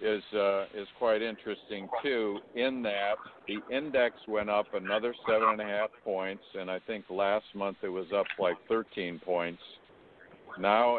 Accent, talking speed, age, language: American, 165 wpm, 60-79, English